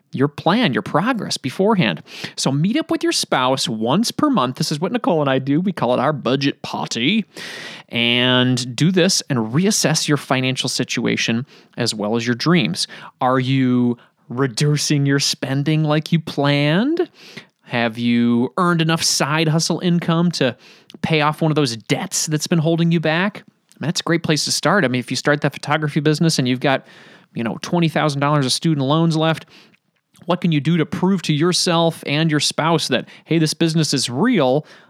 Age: 30-49